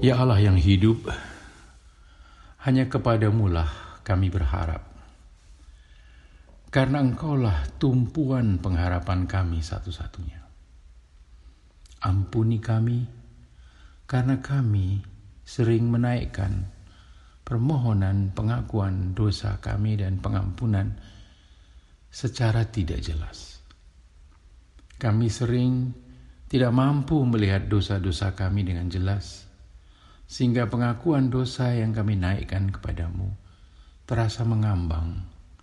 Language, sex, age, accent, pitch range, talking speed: Indonesian, male, 50-69, native, 80-115 Hz, 80 wpm